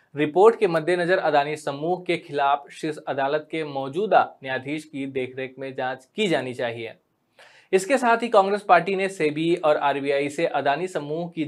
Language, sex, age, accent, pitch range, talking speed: Hindi, male, 20-39, native, 145-185 Hz, 80 wpm